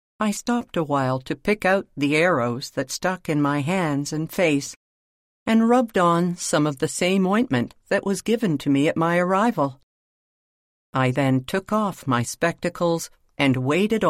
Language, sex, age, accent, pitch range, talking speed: English, female, 50-69, American, 130-185 Hz, 170 wpm